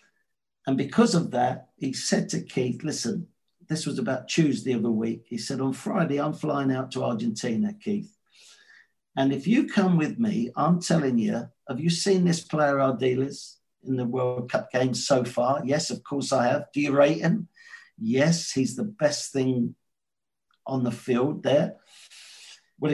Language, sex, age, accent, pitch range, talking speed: English, male, 50-69, British, 130-180 Hz, 175 wpm